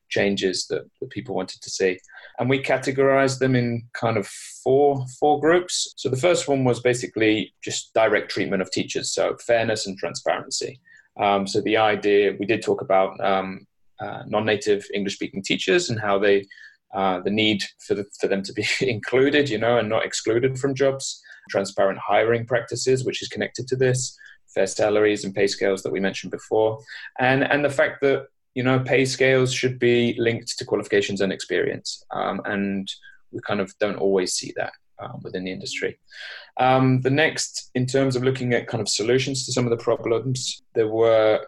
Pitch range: 105-135 Hz